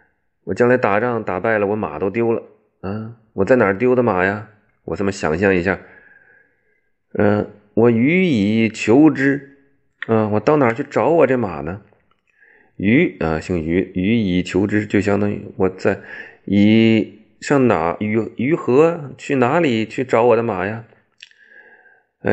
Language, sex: Chinese, male